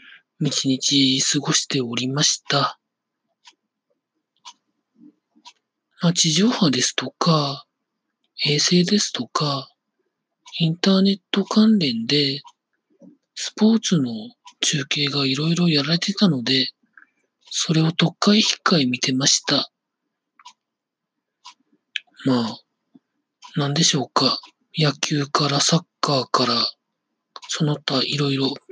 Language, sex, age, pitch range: Japanese, male, 40-59, 140-200 Hz